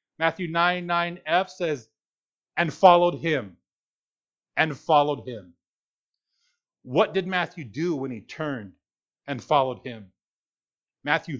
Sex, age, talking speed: male, 40-59, 115 wpm